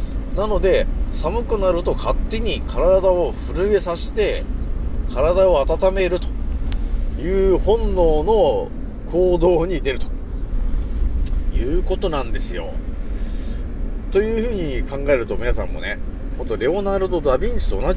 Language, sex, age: Japanese, male, 40-59